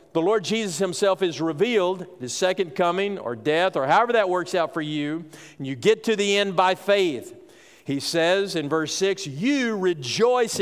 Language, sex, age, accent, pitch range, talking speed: English, male, 50-69, American, 145-190 Hz, 185 wpm